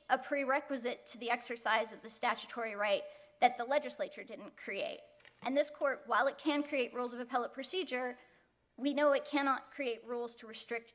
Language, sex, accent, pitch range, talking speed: English, female, American, 225-290 Hz, 180 wpm